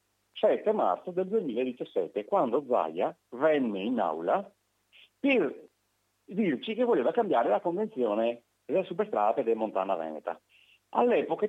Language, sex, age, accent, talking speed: Italian, male, 50-69, native, 120 wpm